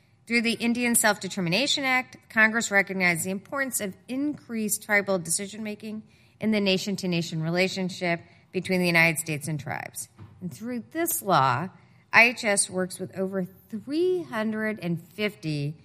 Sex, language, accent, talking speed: female, English, American, 120 wpm